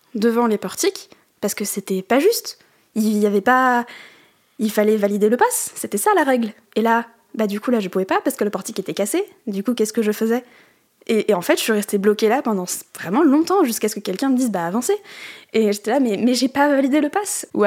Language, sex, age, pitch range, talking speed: French, female, 10-29, 200-235 Hz, 250 wpm